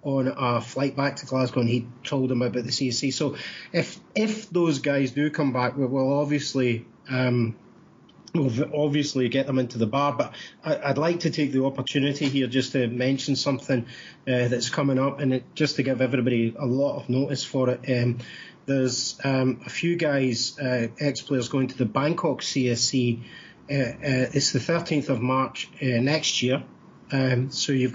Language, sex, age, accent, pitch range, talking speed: English, male, 30-49, British, 125-145 Hz, 190 wpm